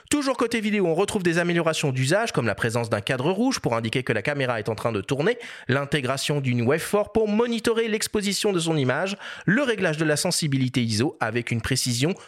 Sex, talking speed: male, 210 wpm